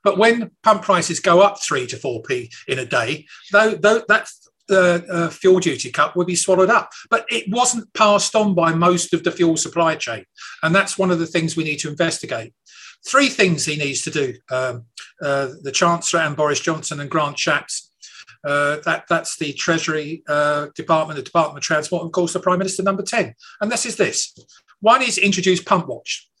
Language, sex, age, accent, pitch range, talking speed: English, male, 40-59, British, 160-195 Hz, 200 wpm